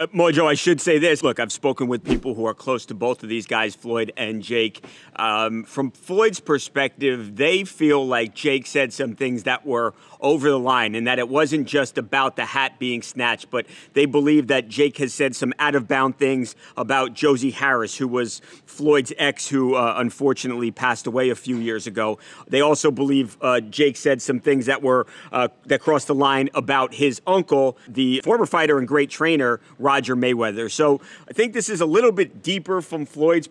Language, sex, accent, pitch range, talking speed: English, male, American, 125-155 Hz, 195 wpm